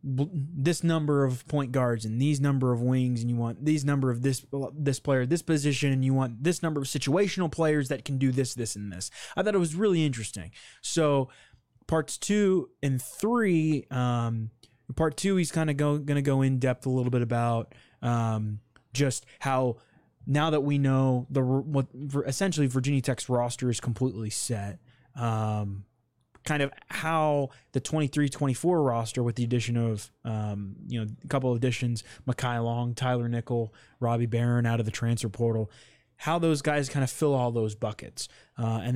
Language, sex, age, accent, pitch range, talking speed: English, male, 20-39, American, 115-140 Hz, 185 wpm